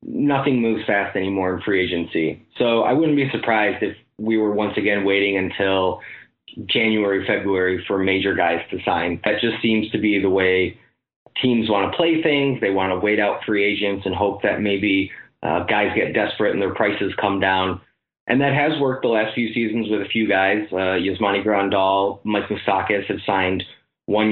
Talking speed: 190 wpm